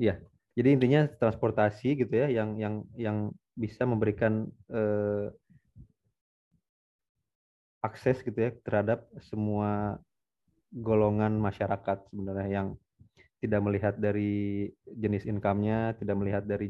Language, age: Indonesian, 20-39